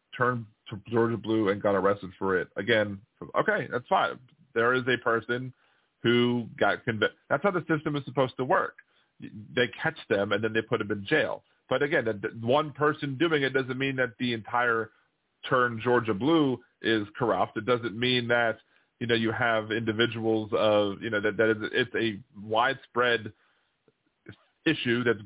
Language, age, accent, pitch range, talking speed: English, 30-49, American, 105-130 Hz, 175 wpm